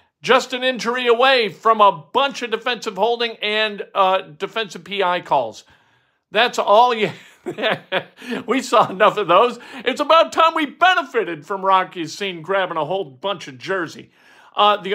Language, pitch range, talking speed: English, 170-225 Hz, 155 wpm